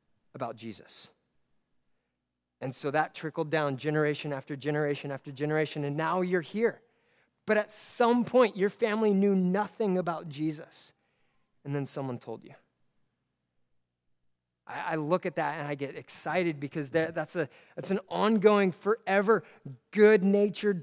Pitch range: 155-205 Hz